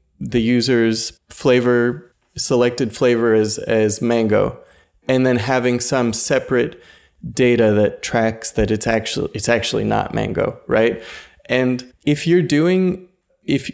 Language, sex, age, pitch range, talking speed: English, male, 20-39, 110-130 Hz, 125 wpm